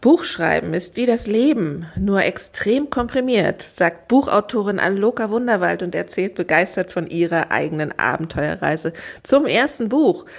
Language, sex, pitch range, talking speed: German, female, 170-235 Hz, 125 wpm